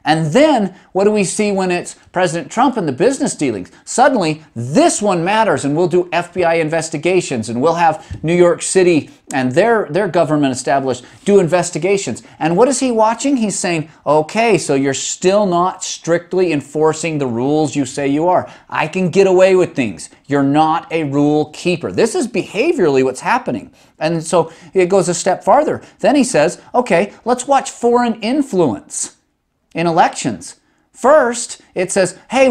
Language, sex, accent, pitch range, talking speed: English, male, American, 155-205 Hz, 170 wpm